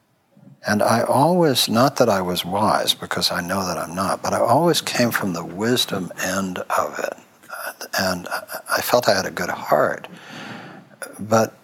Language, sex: English, male